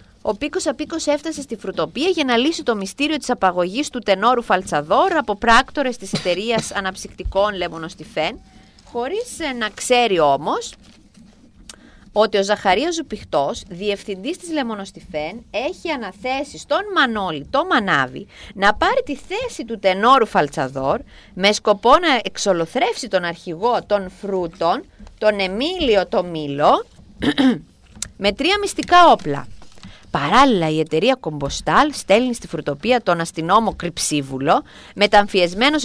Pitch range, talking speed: 175-265 Hz, 120 wpm